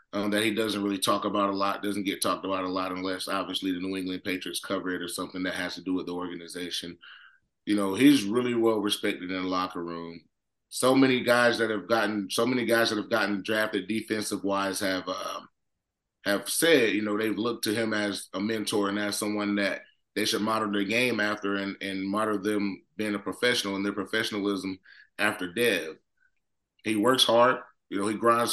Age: 30-49